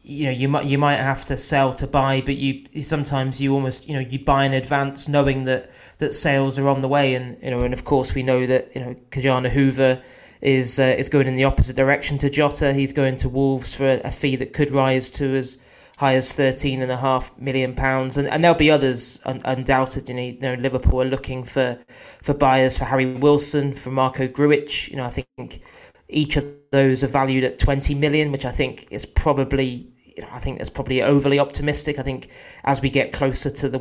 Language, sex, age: English, male, 30-49